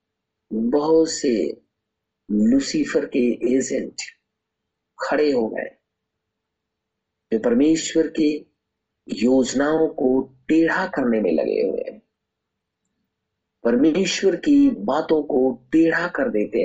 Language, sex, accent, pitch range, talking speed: Hindi, male, native, 110-160 Hz, 95 wpm